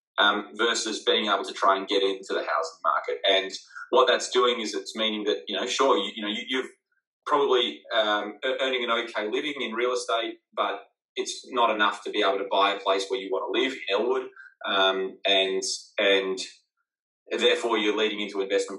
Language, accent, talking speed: English, Australian, 200 wpm